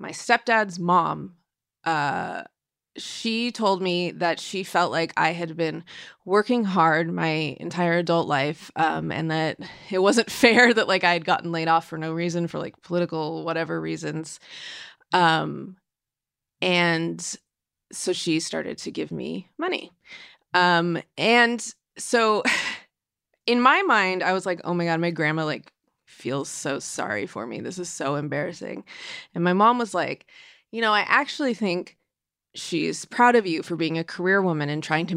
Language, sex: English, female